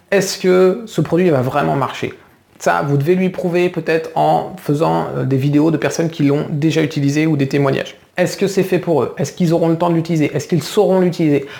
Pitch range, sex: 140-180 Hz, male